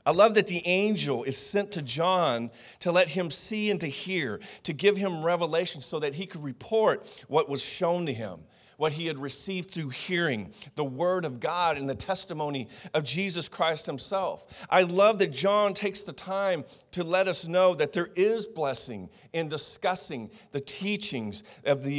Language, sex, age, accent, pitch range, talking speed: English, male, 40-59, American, 145-200 Hz, 185 wpm